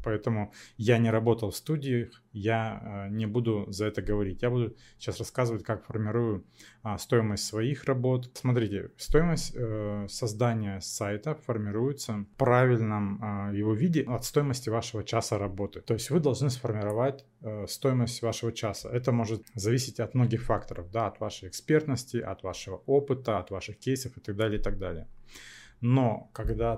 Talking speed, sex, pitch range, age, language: 145 wpm, male, 105-125 Hz, 20-39, Russian